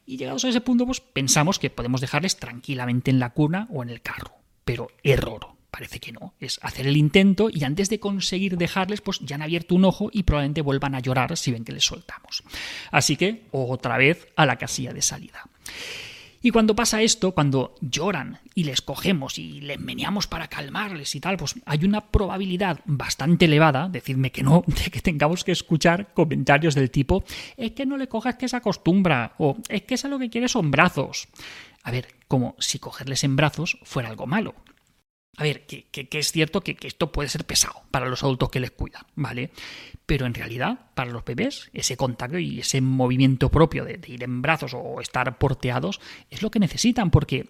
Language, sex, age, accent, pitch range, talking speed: Spanish, male, 30-49, Spanish, 135-190 Hz, 205 wpm